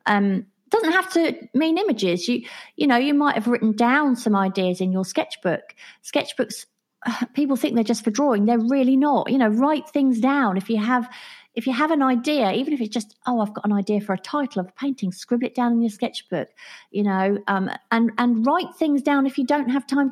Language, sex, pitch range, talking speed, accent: English, female, 195-255 Hz, 225 wpm, British